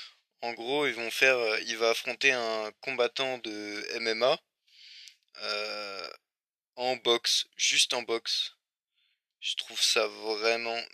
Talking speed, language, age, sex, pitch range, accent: 120 wpm, French, 20-39, male, 110-135 Hz, French